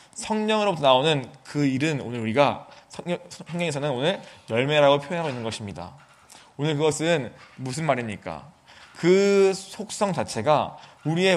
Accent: native